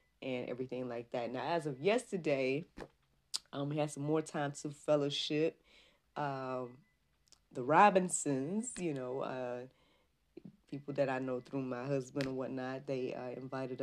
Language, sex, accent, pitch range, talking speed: English, female, American, 135-160 Hz, 150 wpm